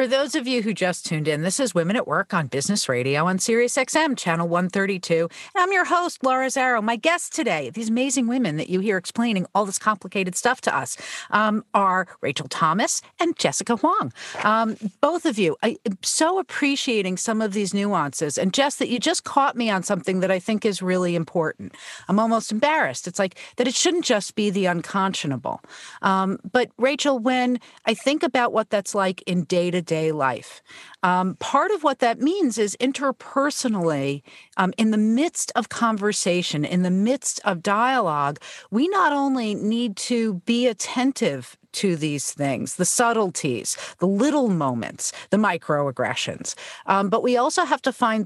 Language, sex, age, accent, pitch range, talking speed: English, female, 50-69, American, 185-260 Hz, 180 wpm